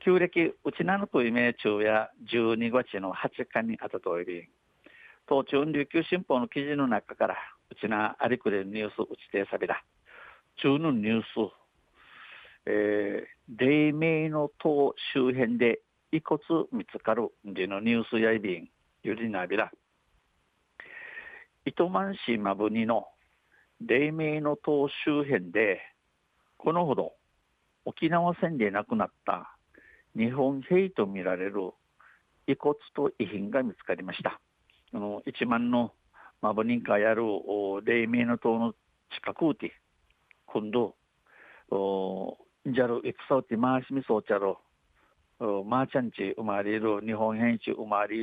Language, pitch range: Japanese, 105-145 Hz